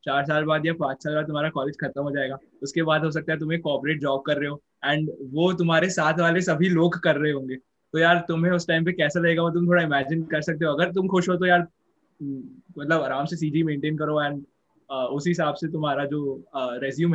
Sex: male